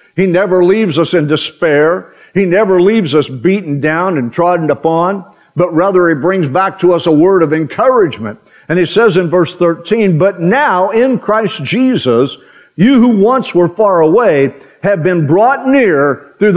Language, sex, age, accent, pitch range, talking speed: English, male, 50-69, American, 180-235 Hz, 175 wpm